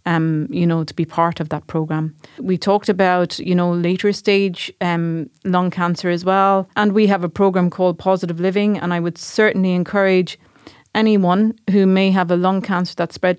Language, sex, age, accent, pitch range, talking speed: English, female, 30-49, Irish, 170-195 Hz, 195 wpm